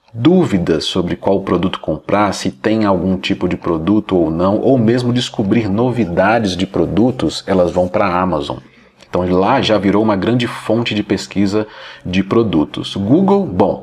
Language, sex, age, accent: Portuguese, male, 40-59, Brazilian